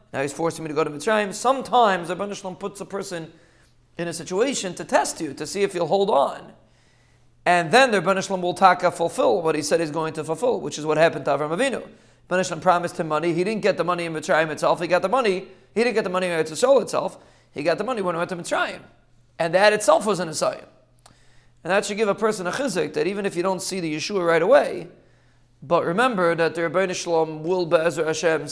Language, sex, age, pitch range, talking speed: English, male, 40-59, 150-185 Hz, 235 wpm